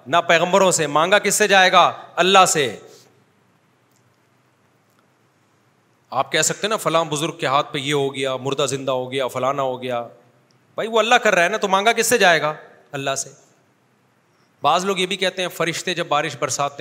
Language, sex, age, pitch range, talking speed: Urdu, male, 40-59, 145-200 Hz, 195 wpm